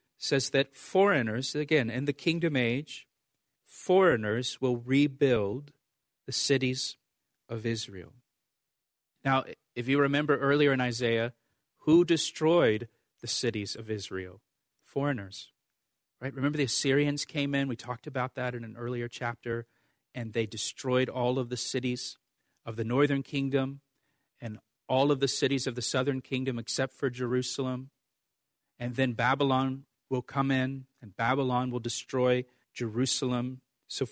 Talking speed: 135 wpm